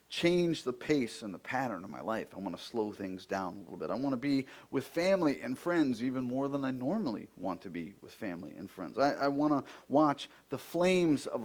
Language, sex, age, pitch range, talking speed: English, male, 40-59, 110-160 Hz, 240 wpm